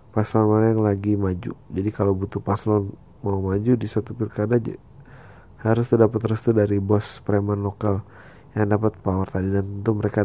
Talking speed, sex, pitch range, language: 170 wpm, male, 100-110 Hz, Indonesian